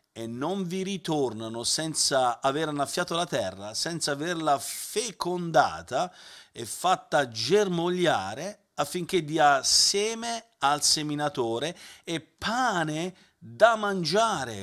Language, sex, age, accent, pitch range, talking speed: Italian, male, 50-69, native, 125-175 Hz, 100 wpm